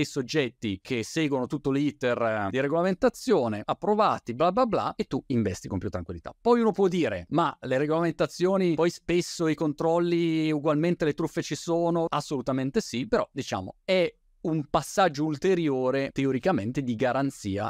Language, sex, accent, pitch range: Italian, male, native, 110-165 Hz